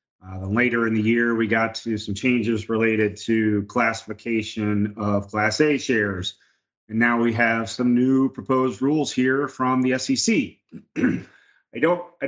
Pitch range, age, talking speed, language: 105-125 Hz, 30-49, 145 wpm, English